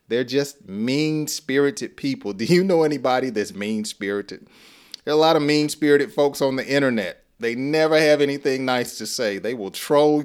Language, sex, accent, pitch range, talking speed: English, male, American, 115-145 Hz, 175 wpm